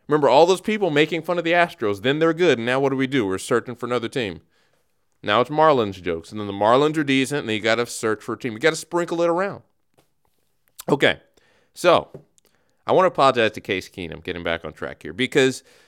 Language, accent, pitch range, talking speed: English, American, 110-150 Hz, 240 wpm